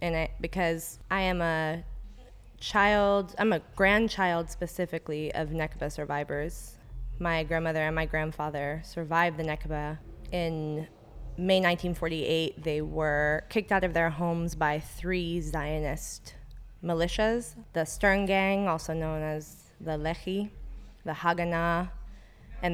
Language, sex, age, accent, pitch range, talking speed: English, female, 20-39, American, 160-185 Hz, 125 wpm